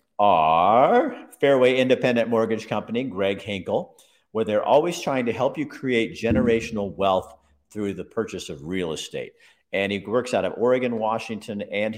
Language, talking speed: English, 155 wpm